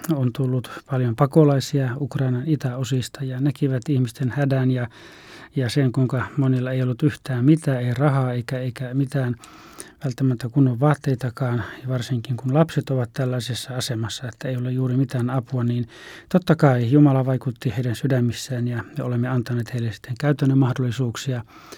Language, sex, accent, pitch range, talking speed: Finnish, male, native, 125-140 Hz, 150 wpm